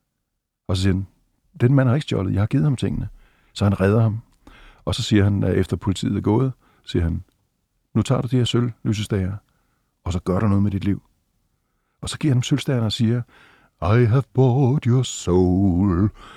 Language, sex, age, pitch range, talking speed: Danish, male, 60-79, 95-125 Hz, 205 wpm